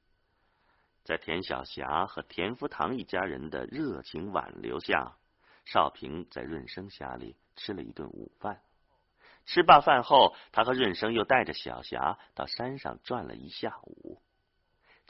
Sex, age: male, 50-69